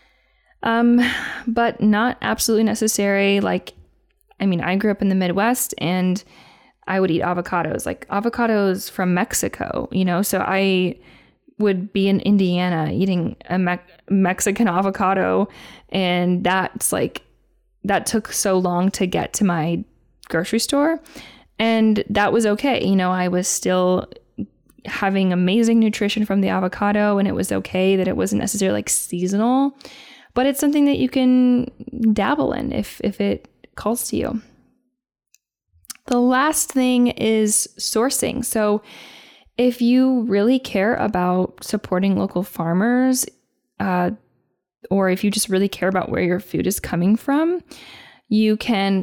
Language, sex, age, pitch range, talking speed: English, female, 10-29, 185-235 Hz, 145 wpm